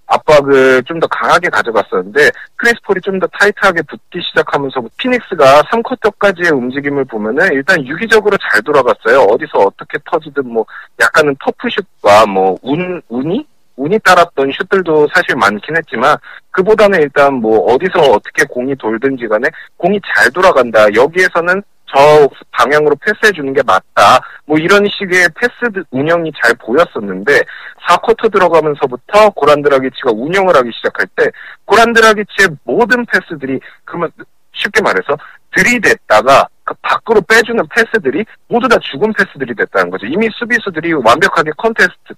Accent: native